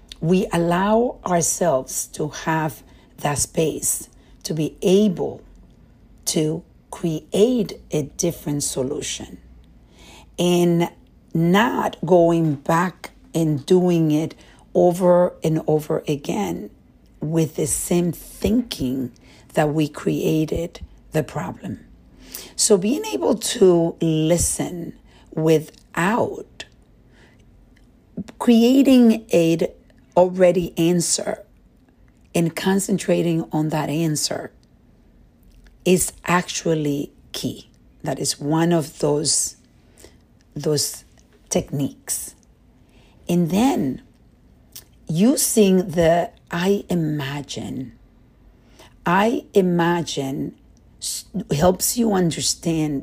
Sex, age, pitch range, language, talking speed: female, 50-69, 155-185 Hz, English, 80 wpm